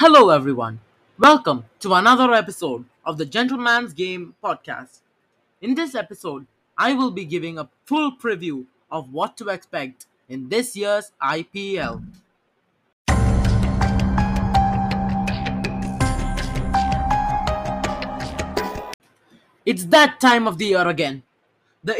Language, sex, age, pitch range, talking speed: English, male, 20-39, 145-225 Hz, 100 wpm